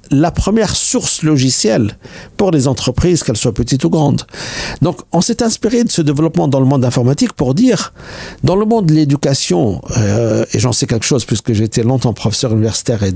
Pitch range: 115-160 Hz